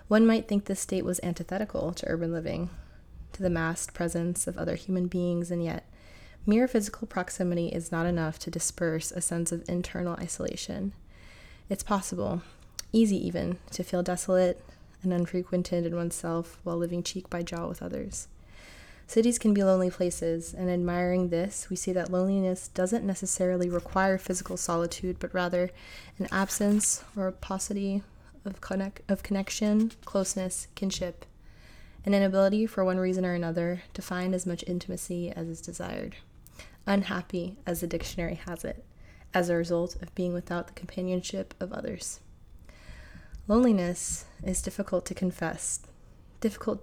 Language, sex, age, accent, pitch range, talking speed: English, female, 20-39, American, 175-195 Hz, 150 wpm